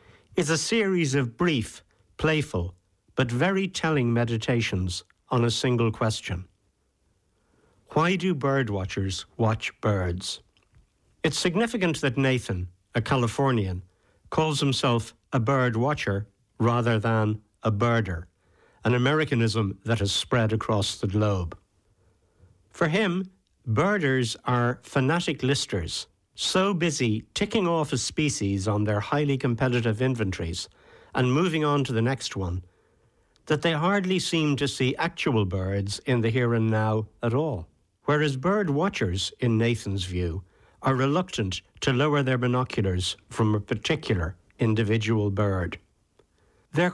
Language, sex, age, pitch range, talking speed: English, male, 60-79, 100-145 Hz, 125 wpm